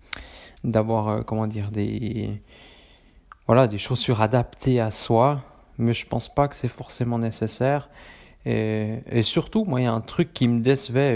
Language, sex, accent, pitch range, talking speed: French, male, French, 110-125 Hz, 165 wpm